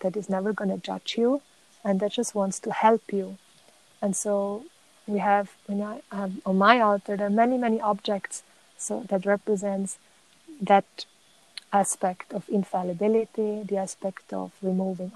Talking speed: 160 wpm